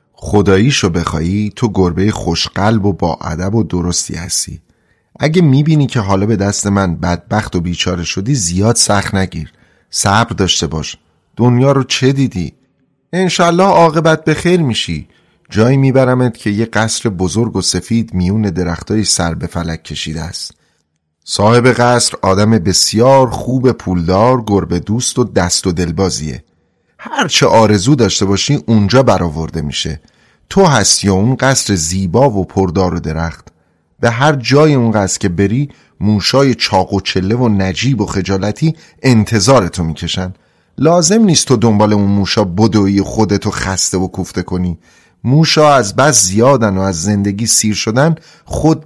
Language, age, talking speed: Persian, 30-49, 145 wpm